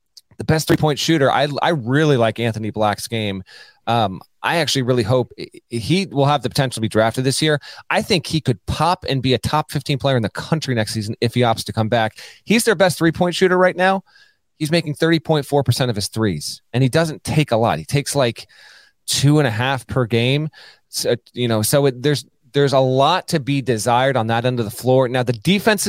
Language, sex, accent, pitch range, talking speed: English, male, American, 120-155 Hz, 225 wpm